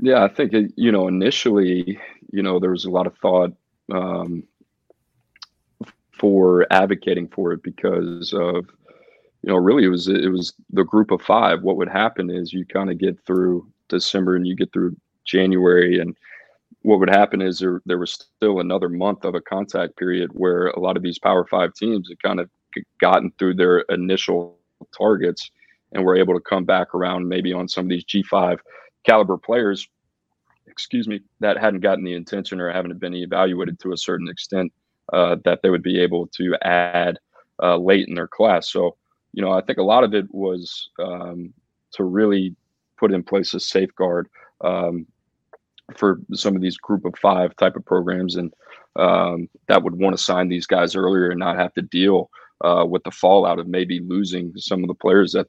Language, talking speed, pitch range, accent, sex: English, 190 wpm, 90-95 Hz, American, male